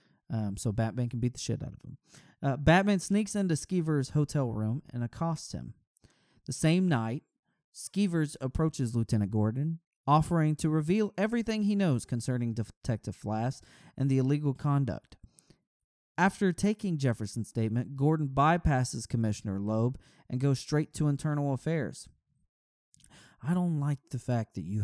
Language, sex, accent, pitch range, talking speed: English, male, American, 115-170 Hz, 145 wpm